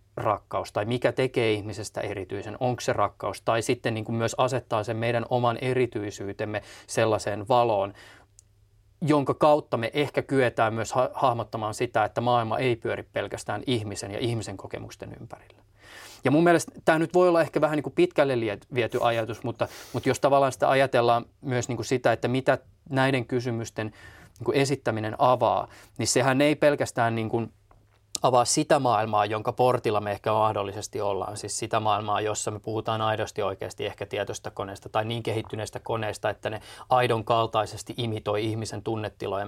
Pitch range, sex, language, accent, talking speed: 105-130 Hz, male, Finnish, native, 155 wpm